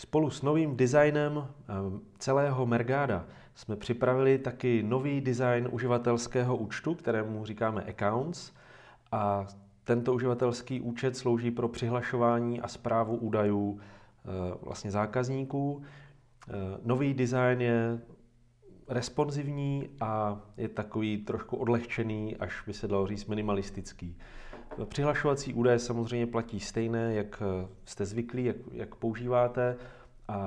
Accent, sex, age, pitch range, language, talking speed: native, male, 30-49, 105-125 Hz, Czech, 105 wpm